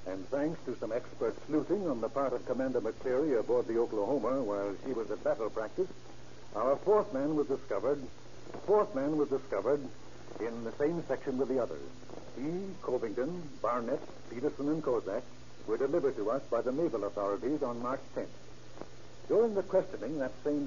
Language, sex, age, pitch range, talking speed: English, male, 70-89, 125-170 Hz, 170 wpm